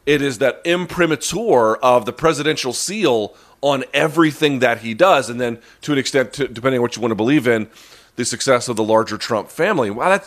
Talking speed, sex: 210 wpm, male